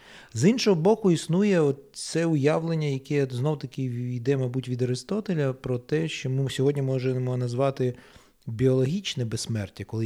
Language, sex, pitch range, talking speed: Ukrainian, male, 120-150 Hz, 130 wpm